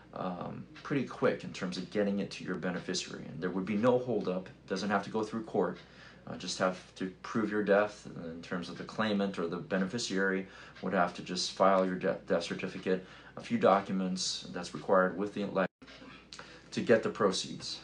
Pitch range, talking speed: 90-105 Hz, 205 wpm